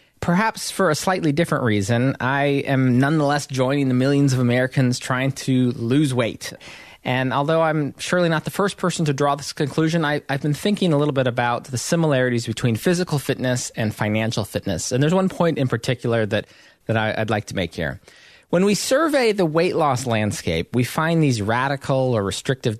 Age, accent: 20-39, American